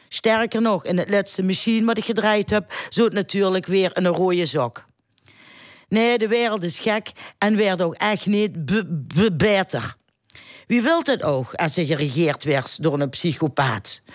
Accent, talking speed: Dutch, 165 wpm